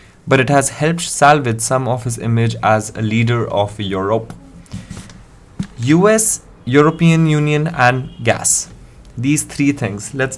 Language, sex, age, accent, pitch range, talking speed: English, male, 20-39, Indian, 110-140 Hz, 135 wpm